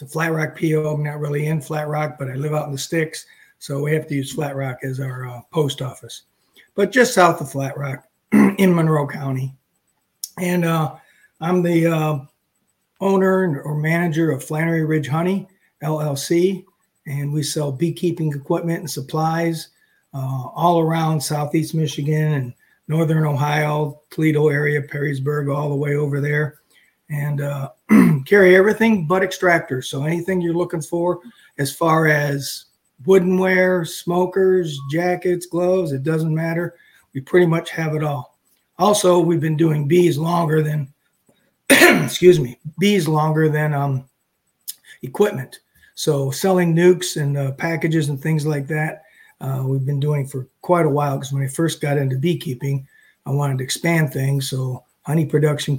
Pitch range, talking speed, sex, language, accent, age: 140-170 Hz, 160 wpm, male, English, American, 40-59